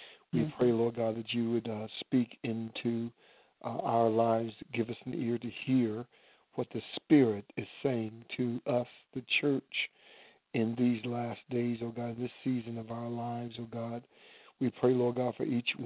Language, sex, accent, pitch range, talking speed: English, male, American, 115-125 Hz, 180 wpm